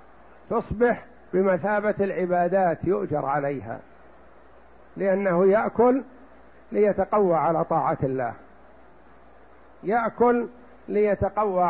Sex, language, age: male, Arabic, 60-79